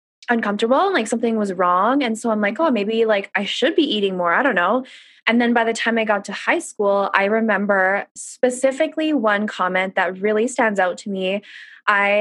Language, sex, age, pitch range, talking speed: English, female, 20-39, 195-245 Hz, 210 wpm